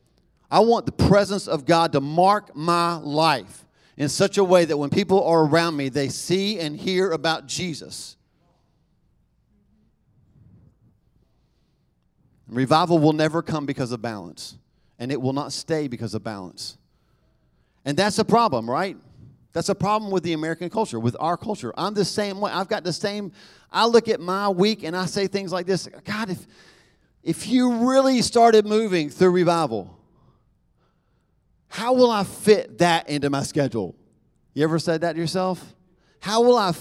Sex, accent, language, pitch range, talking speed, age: male, American, English, 135-195 Hz, 165 wpm, 40-59